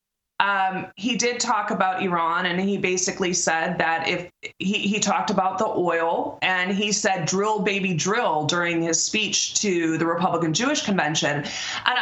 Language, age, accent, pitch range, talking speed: English, 20-39, American, 175-220 Hz, 155 wpm